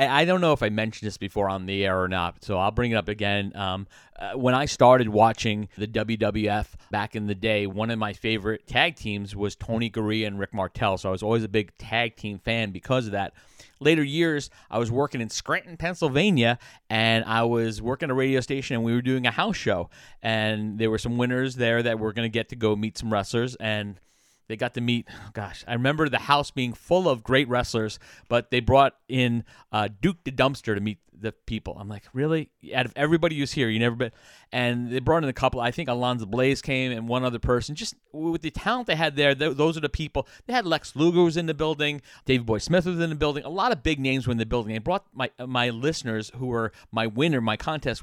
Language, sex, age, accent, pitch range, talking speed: English, male, 30-49, American, 110-135 Hz, 245 wpm